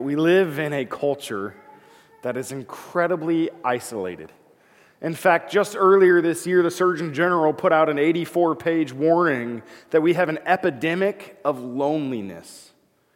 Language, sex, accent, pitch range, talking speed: English, male, American, 125-170 Hz, 135 wpm